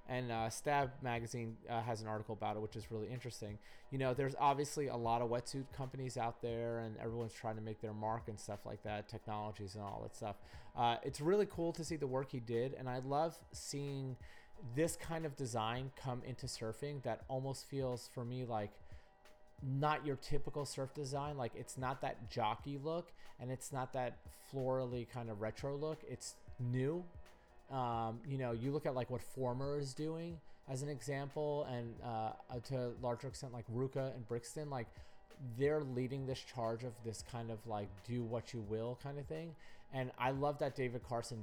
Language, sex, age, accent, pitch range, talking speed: English, male, 30-49, American, 115-140 Hz, 200 wpm